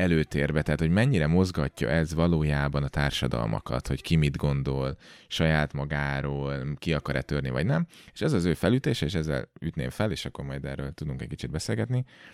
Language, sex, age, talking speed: Hungarian, male, 30-49, 180 wpm